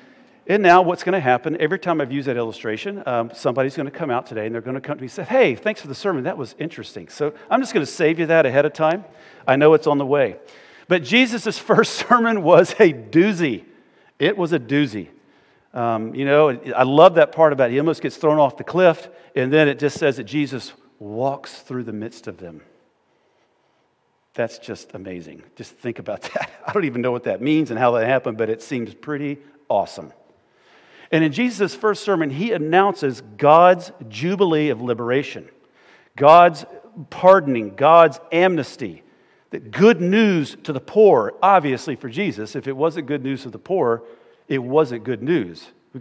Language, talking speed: English, 200 wpm